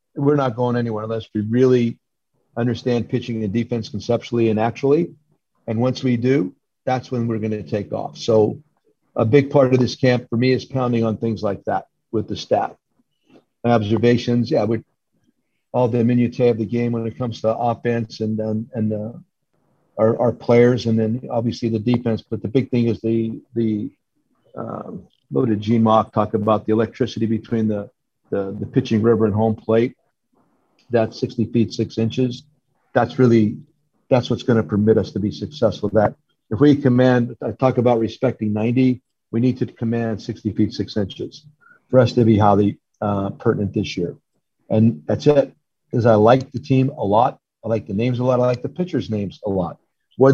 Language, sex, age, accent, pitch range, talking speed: English, male, 50-69, American, 110-130 Hz, 190 wpm